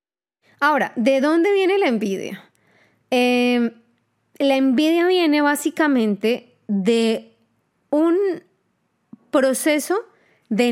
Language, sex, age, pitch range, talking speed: Spanish, female, 20-39, 215-290 Hz, 85 wpm